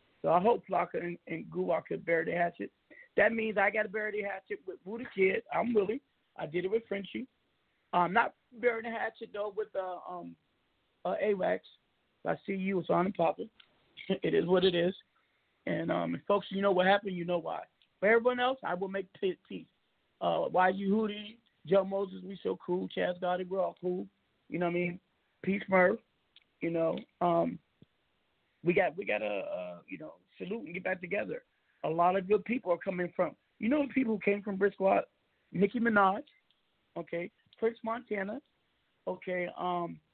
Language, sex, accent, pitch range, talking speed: English, male, American, 180-230 Hz, 195 wpm